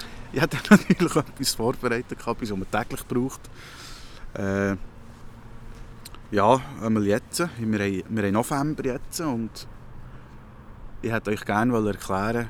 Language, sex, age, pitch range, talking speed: German, male, 30-49, 105-120 Hz, 125 wpm